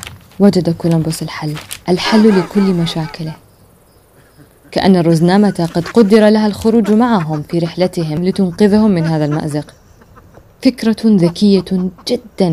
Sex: female